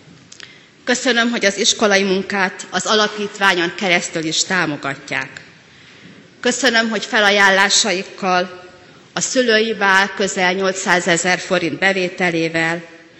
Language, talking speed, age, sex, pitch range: Hungarian, 90 wpm, 30-49, female, 165-195 Hz